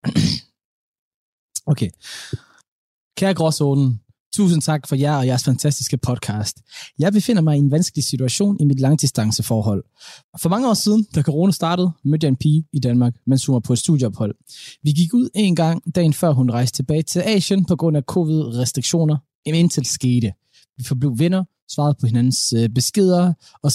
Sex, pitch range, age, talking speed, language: male, 135-175 Hz, 20-39, 165 wpm, Danish